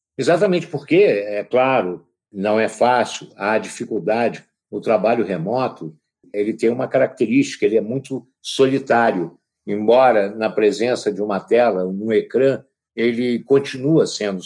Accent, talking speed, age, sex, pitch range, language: Brazilian, 130 wpm, 60-79, male, 105-140 Hz, Portuguese